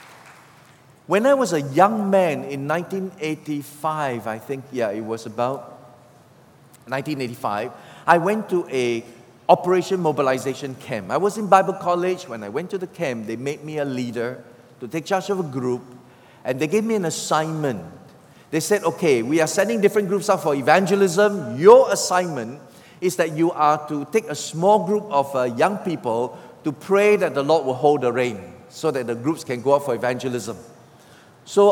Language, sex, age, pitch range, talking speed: English, male, 40-59, 125-180 Hz, 180 wpm